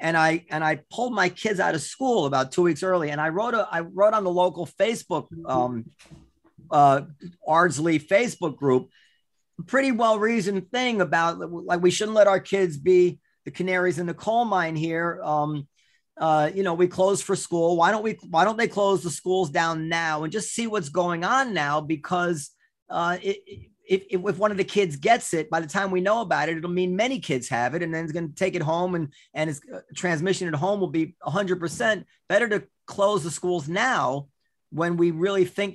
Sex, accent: male, American